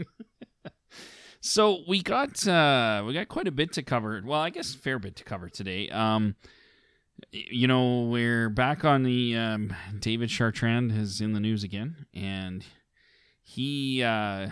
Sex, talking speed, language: male, 155 wpm, English